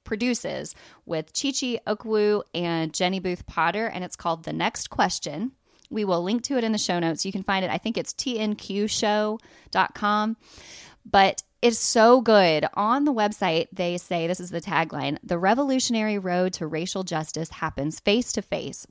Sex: female